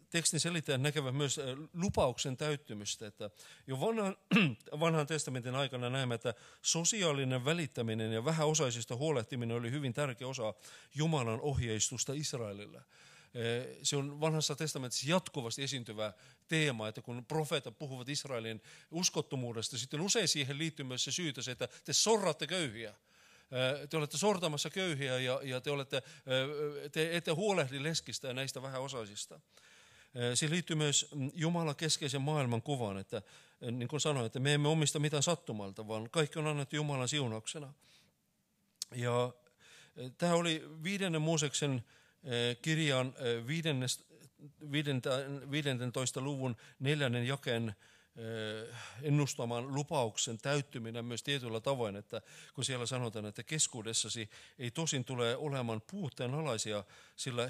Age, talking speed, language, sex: 50-69, 125 wpm, Finnish, male